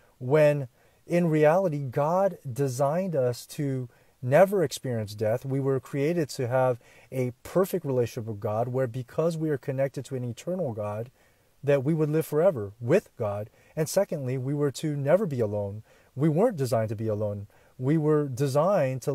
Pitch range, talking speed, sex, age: 125-165 Hz, 170 wpm, male, 30-49